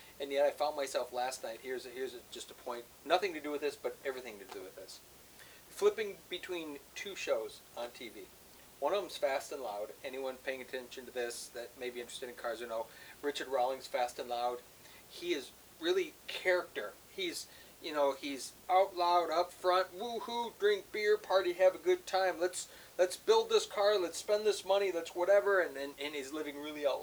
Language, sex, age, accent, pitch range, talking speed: English, male, 40-59, American, 140-190 Hz, 205 wpm